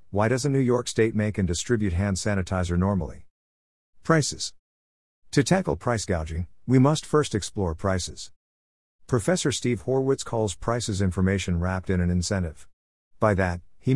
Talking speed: 145 wpm